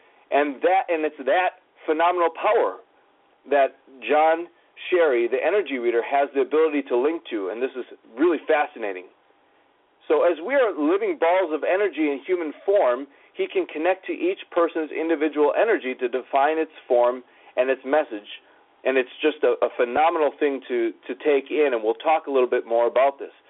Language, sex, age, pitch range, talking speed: English, male, 40-59, 135-190 Hz, 180 wpm